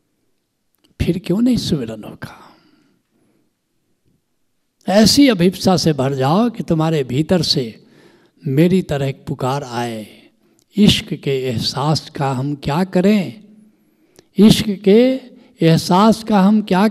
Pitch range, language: 160-220 Hz, Hindi